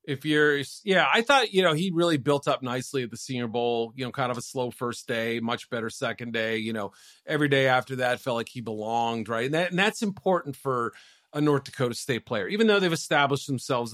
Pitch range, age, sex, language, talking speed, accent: 125-155 Hz, 40-59, male, English, 235 wpm, American